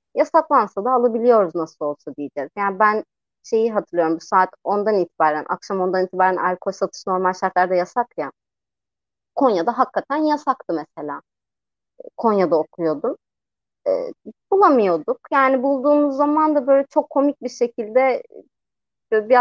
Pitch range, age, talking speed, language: 185-270 Hz, 30-49, 125 wpm, Turkish